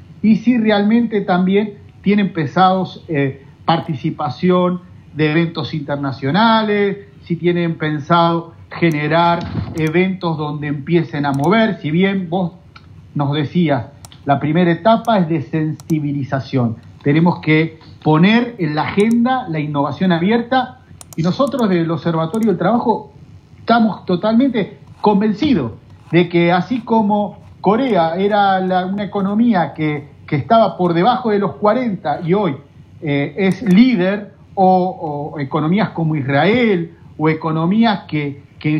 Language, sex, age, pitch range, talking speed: Spanish, male, 40-59, 150-205 Hz, 120 wpm